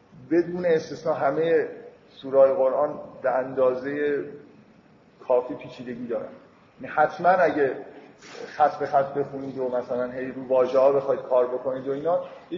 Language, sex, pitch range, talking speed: Persian, male, 130-155 Hz, 130 wpm